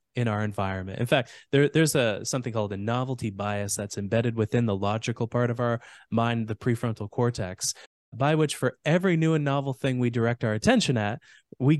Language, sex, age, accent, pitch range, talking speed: English, male, 20-39, American, 115-150 Hz, 195 wpm